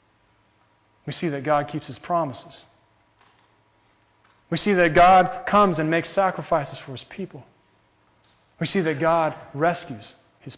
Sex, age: male, 30-49